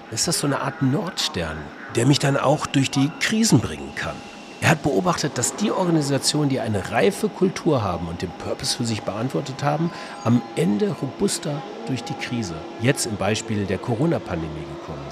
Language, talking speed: German, 180 wpm